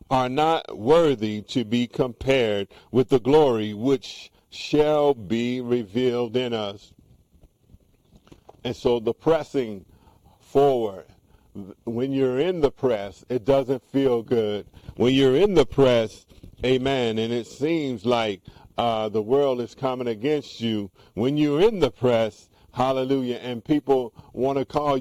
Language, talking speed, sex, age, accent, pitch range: English, 135 wpm, male, 50-69, American, 105-130 Hz